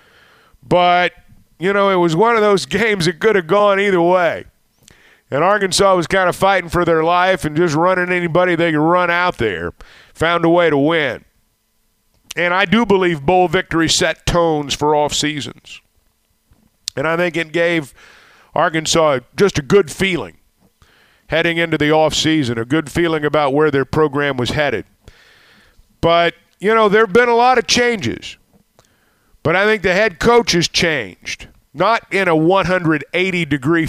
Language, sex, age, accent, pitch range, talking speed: English, male, 50-69, American, 155-195 Hz, 170 wpm